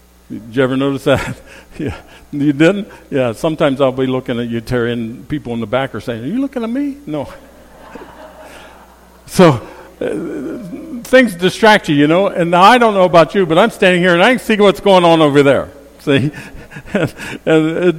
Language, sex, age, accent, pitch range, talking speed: English, male, 60-79, American, 120-185 Hz, 185 wpm